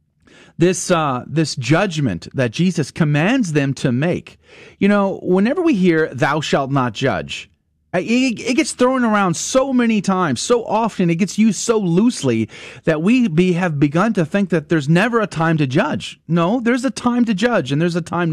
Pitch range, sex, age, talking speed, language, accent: 140-200 Hz, male, 30-49, 185 wpm, English, American